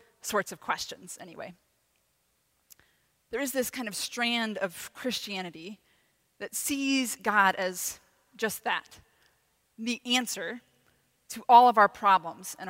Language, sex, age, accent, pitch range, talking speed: English, female, 20-39, American, 195-245 Hz, 125 wpm